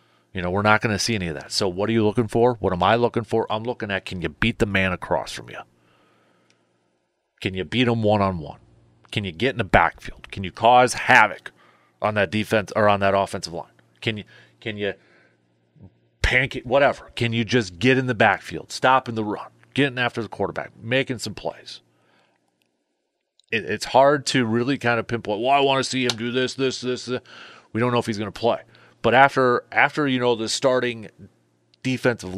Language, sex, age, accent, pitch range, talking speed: English, male, 30-49, American, 90-120 Hz, 215 wpm